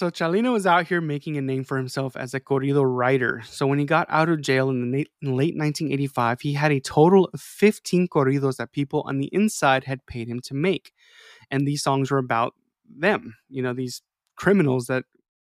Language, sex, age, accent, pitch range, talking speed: English, male, 20-39, American, 130-170 Hz, 210 wpm